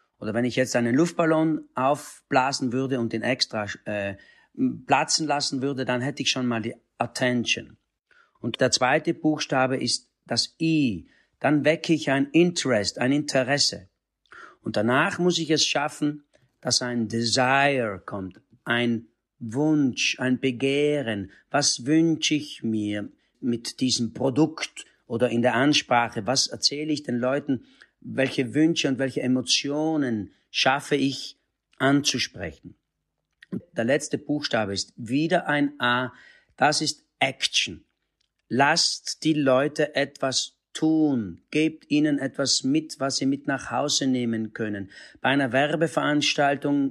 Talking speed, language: 135 wpm, German